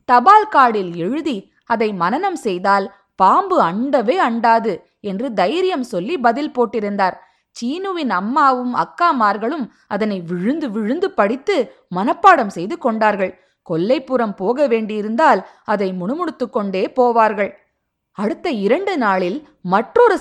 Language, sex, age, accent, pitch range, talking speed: Tamil, female, 20-39, native, 210-310 Hz, 100 wpm